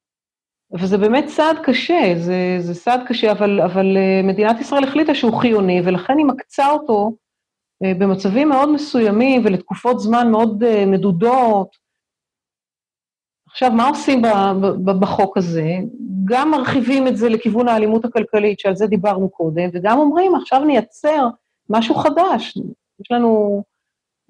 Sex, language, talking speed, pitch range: female, Hebrew, 130 wpm, 200-260 Hz